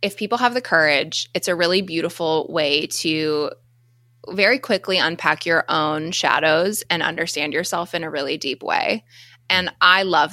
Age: 20-39